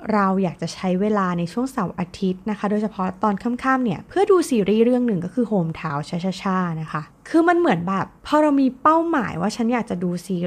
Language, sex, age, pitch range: Thai, female, 20-39, 175-235 Hz